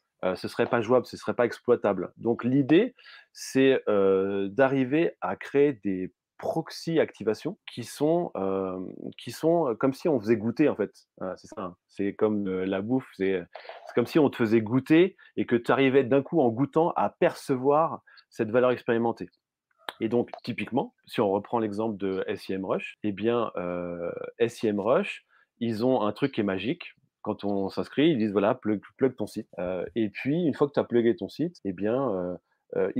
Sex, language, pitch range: male, French, 100-135 Hz